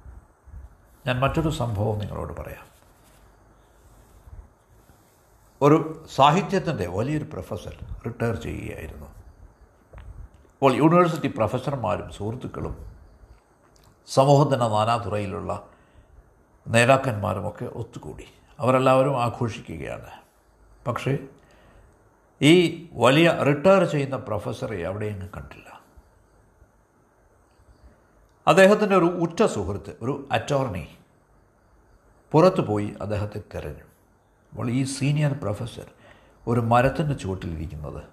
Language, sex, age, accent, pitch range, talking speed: Malayalam, male, 60-79, native, 95-140 Hz, 70 wpm